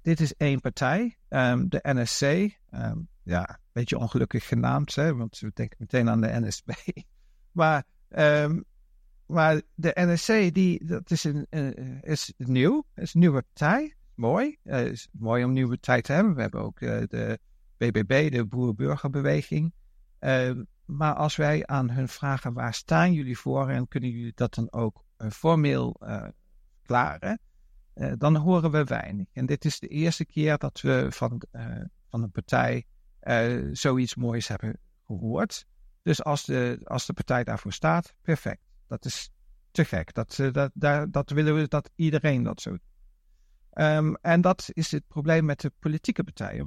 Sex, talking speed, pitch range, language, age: male, 170 wpm, 115-160 Hz, Dutch, 60-79